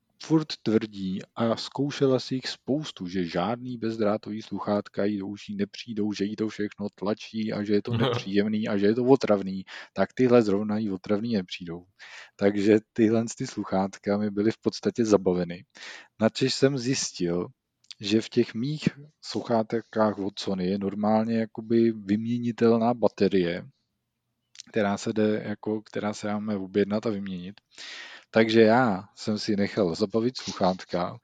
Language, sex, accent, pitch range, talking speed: Czech, male, native, 100-115 Hz, 140 wpm